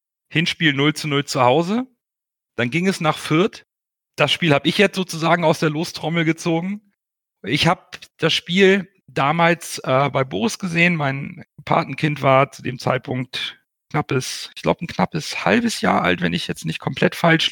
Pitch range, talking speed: 125-160 Hz, 170 wpm